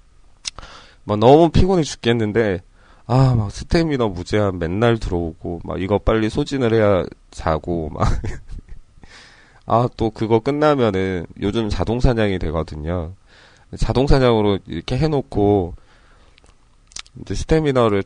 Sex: male